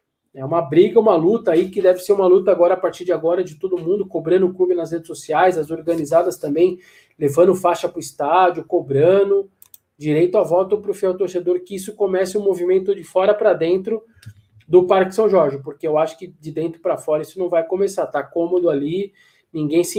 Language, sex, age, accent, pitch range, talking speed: Portuguese, male, 20-39, Brazilian, 165-200 Hz, 215 wpm